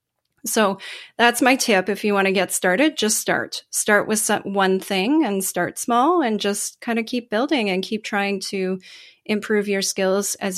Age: 30-49